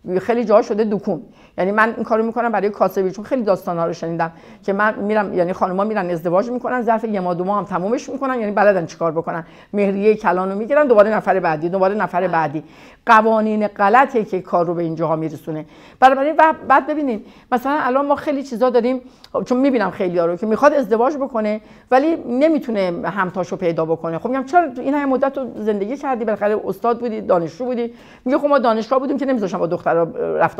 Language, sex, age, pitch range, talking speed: Persian, female, 50-69, 185-260 Hz, 190 wpm